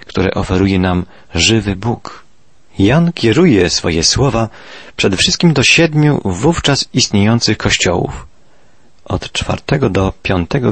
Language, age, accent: Polish, 40-59, native